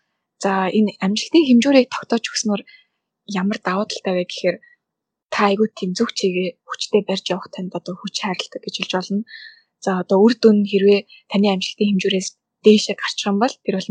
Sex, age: female, 10-29